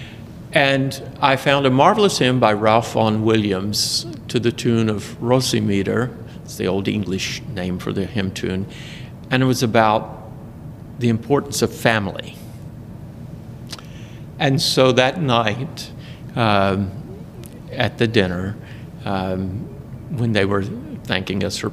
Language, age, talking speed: English, 50-69, 130 wpm